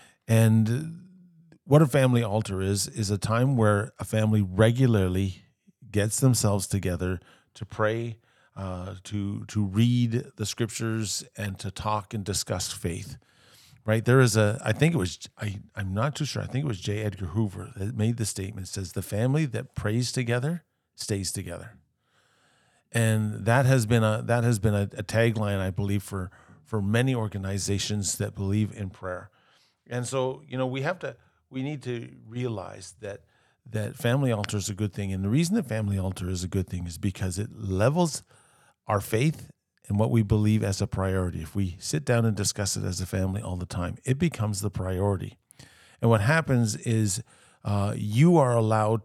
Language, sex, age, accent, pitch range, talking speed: English, male, 40-59, American, 100-120 Hz, 185 wpm